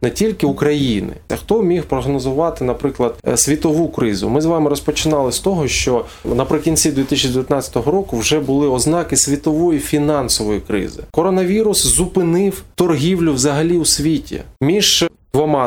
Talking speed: 125 wpm